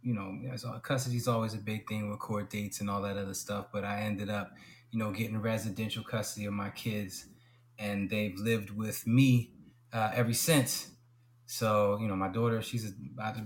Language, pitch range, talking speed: English, 110-130 Hz, 195 wpm